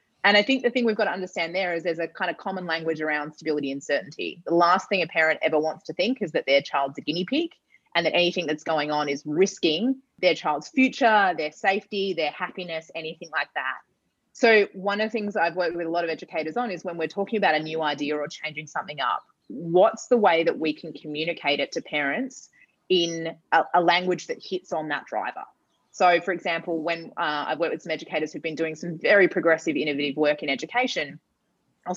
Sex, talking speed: female, 225 wpm